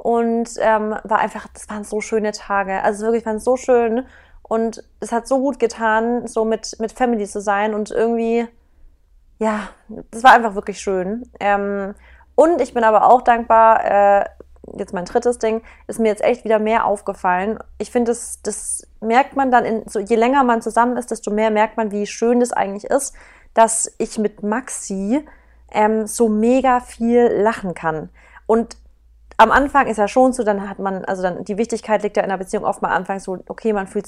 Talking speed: 200 wpm